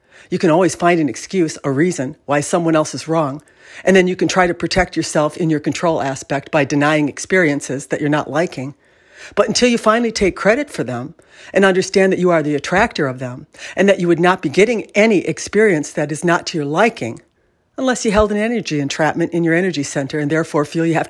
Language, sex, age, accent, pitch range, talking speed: English, female, 60-79, American, 150-190 Hz, 225 wpm